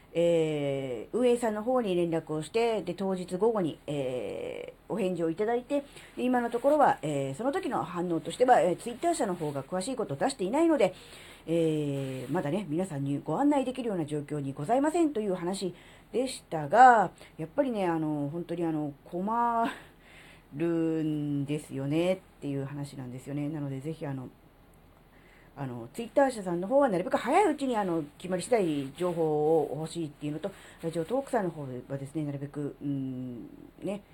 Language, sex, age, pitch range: Japanese, female, 40-59, 150-235 Hz